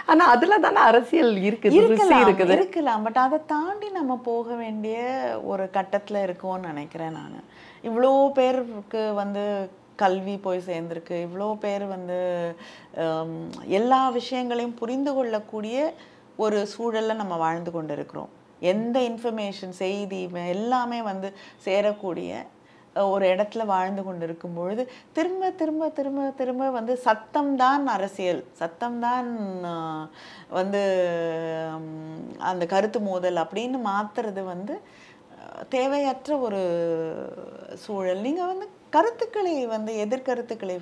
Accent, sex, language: native, female, Tamil